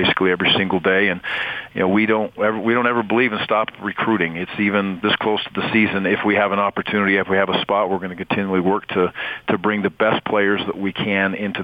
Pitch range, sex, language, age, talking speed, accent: 95-105 Hz, male, English, 40-59, 255 wpm, American